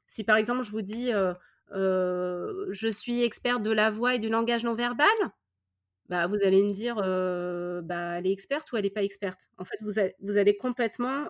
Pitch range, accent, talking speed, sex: 190-235 Hz, French, 235 wpm, female